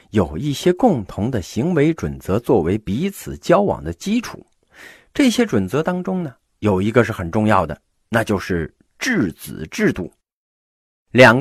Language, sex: Chinese, male